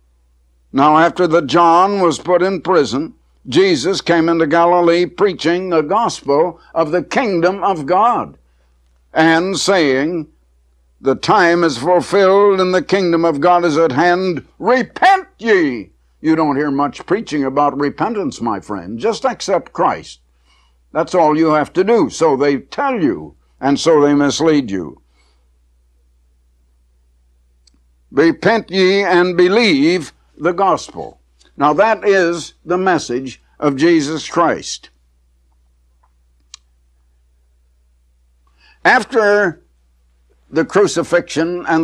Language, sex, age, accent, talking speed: English, male, 60-79, American, 115 wpm